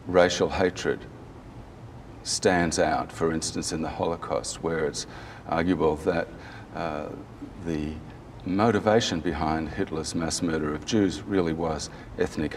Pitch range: 80-105 Hz